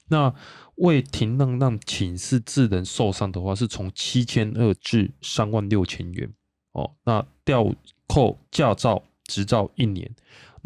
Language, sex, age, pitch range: Chinese, male, 20-39, 95-120 Hz